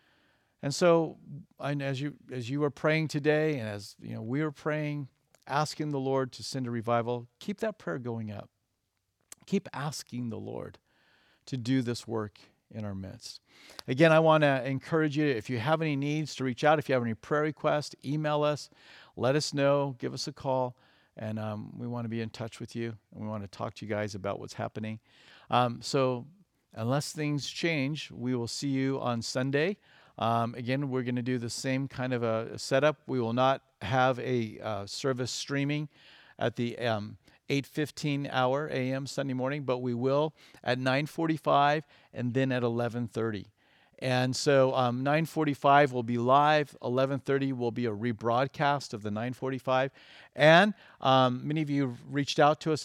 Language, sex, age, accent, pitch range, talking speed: English, male, 50-69, American, 120-145 Hz, 185 wpm